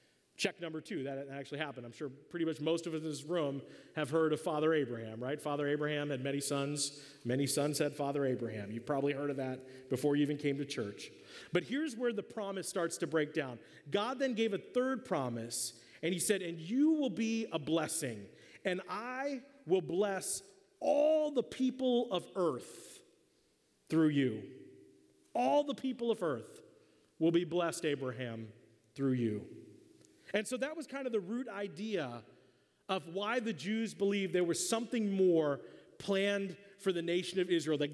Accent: American